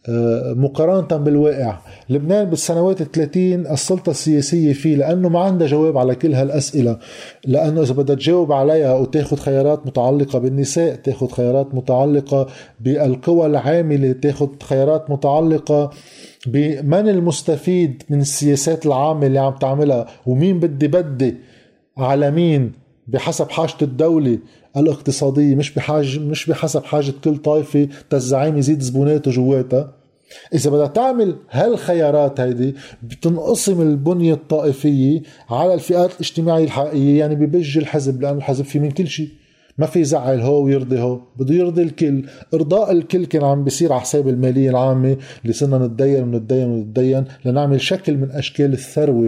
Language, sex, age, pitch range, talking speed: Arabic, male, 20-39, 135-165 Hz, 135 wpm